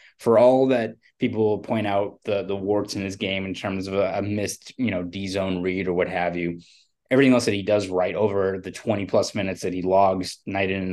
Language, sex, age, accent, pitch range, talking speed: English, male, 20-39, American, 95-110 Hz, 240 wpm